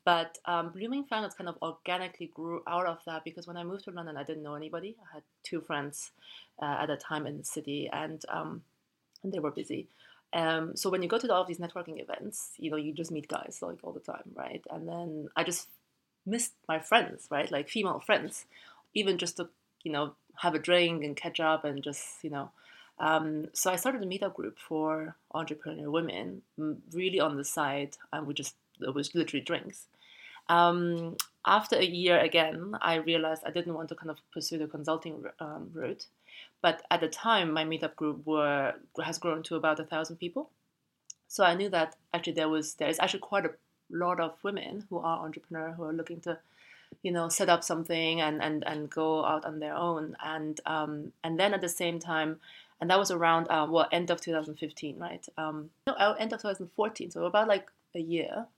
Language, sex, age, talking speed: English, female, 30-49, 205 wpm